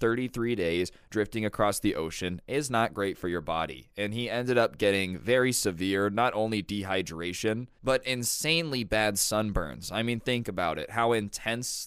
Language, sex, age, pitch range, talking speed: English, male, 20-39, 100-125 Hz, 165 wpm